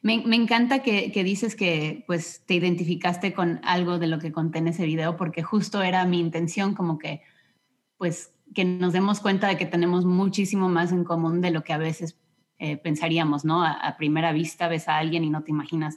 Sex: female